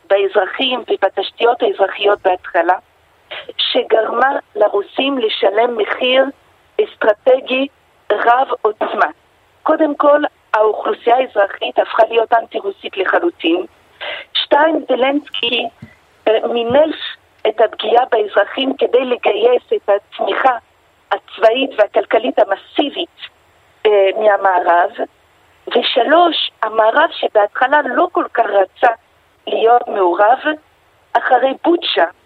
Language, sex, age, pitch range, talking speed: Hebrew, female, 50-69, 215-320 Hz, 85 wpm